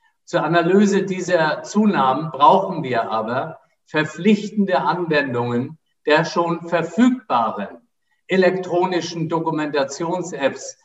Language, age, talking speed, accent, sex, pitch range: German, 50-69, 75 wpm, German, male, 130-175 Hz